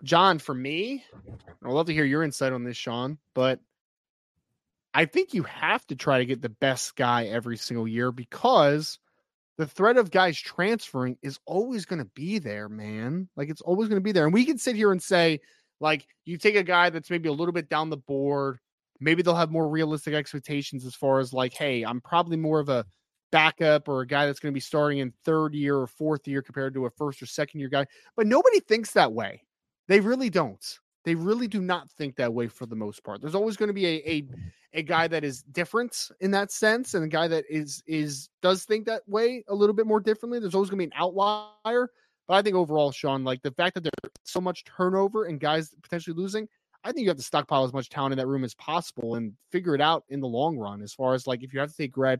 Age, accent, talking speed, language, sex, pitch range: 20-39, American, 245 wpm, English, male, 130-180 Hz